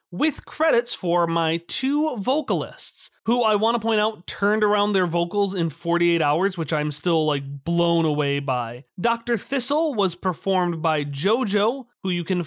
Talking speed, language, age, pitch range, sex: 170 wpm, English, 30-49, 170-220 Hz, male